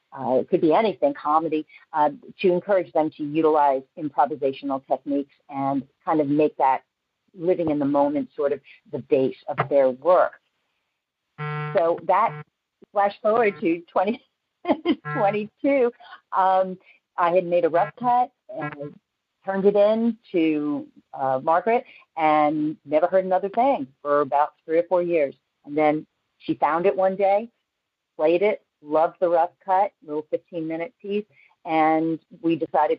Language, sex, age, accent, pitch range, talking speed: English, female, 50-69, American, 145-200 Hz, 145 wpm